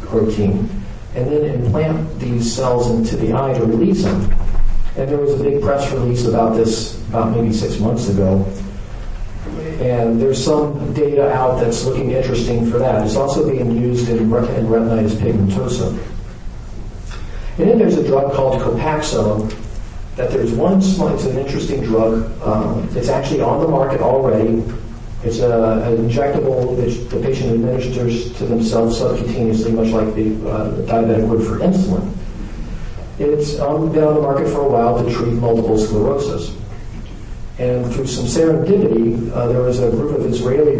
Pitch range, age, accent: 110-130 Hz, 50-69, American